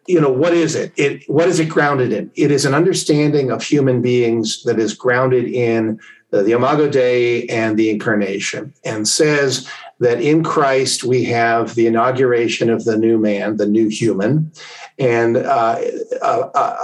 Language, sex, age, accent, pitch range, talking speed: English, male, 50-69, American, 115-155 Hz, 170 wpm